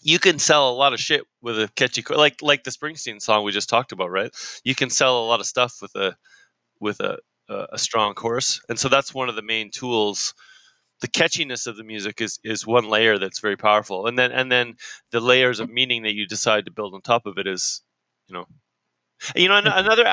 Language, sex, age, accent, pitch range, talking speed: English, male, 20-39, American, 110-140 Hz, 235 wpm